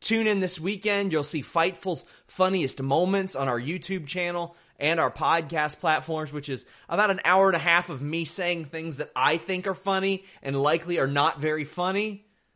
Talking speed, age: 190 wpm, 30-49